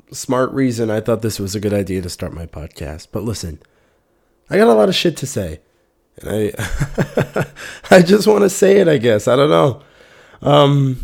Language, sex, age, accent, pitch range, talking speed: English, male, 20-39, American, 100-145 Hz, 200 wpm